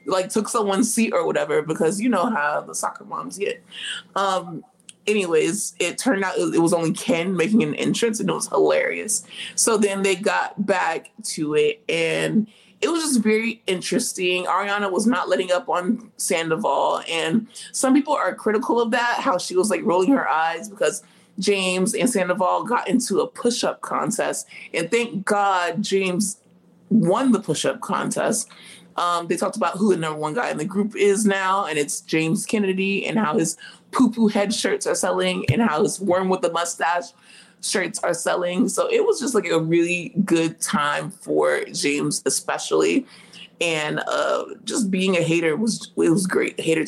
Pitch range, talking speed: 180-240 Hz, 180 wpm